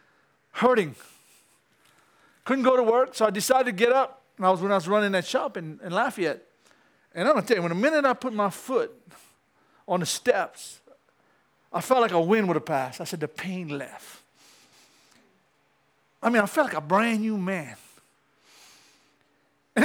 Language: English